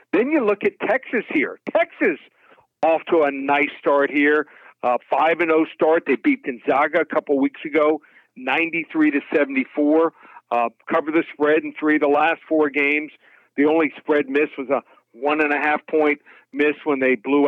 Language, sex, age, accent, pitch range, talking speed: English, male, 50-69, American, 140-165 Hz, 185 wpm